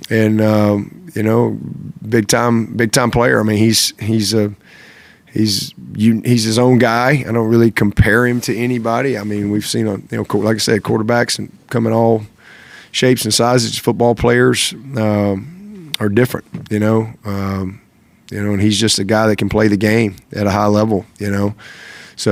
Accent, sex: American, male